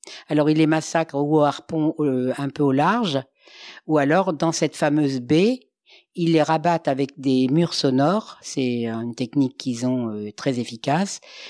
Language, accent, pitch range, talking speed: French, French, 140-175 Hz, 170 wpm